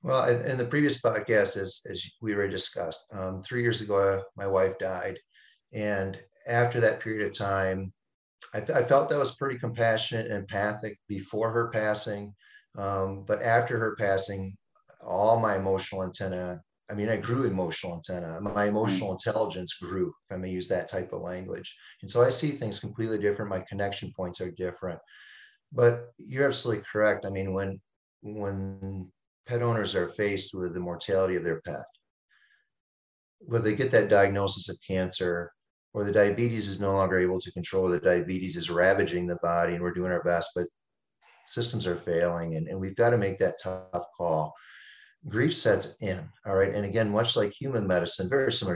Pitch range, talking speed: 95-110 Hz, 180 wpm